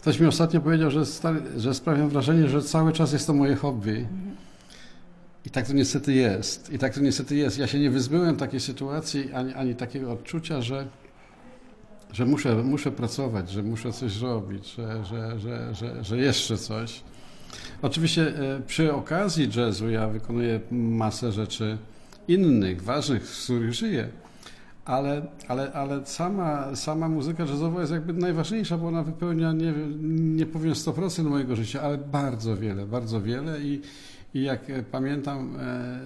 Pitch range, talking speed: 115-145 Hz, 155 wpm